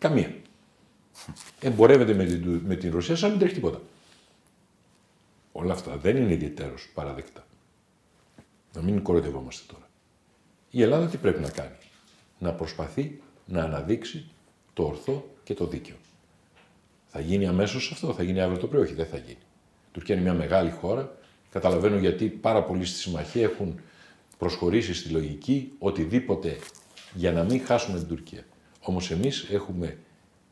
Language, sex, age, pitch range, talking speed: Greek, male, 50-69, 85-110 Hz, 145 wpm